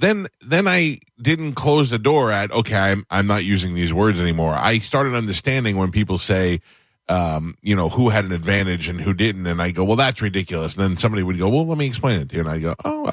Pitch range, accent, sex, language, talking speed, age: 85-115 Hz, American, male, English, 245 wpm, 30-49